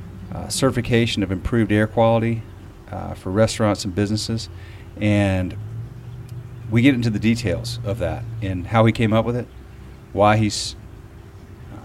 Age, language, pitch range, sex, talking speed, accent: 40-59, English, 100-115 Hz, male, 140 wpm, American